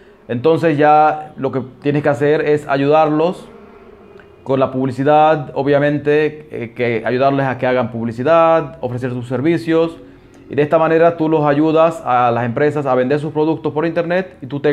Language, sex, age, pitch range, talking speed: Spanish, male, 30-49, 125-155 Hz, 170 wpm